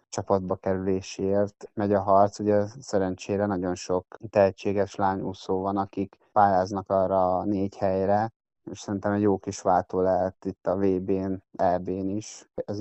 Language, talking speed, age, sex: Hungarian, 150 wpm, 20-39, male